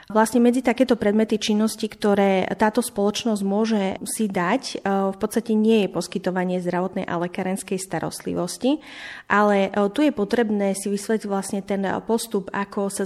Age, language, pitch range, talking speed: 30-49, Slovak, 190-230 Hz, 140 wpm